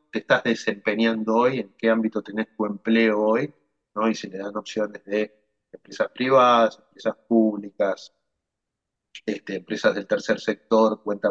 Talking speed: 140 wpm